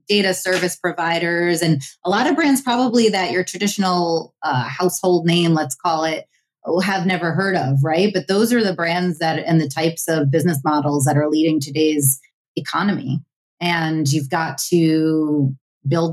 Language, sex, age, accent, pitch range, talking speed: English, female, 30-49, American, 150-175 Hz, 165 wpm